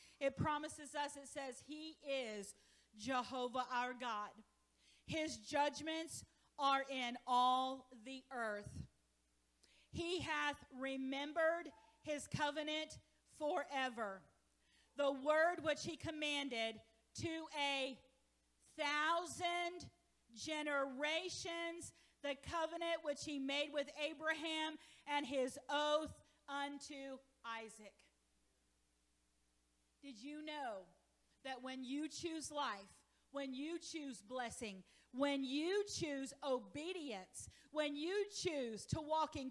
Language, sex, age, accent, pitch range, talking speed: English, female, 40-59, American, 255-305 Hz, 100 wpm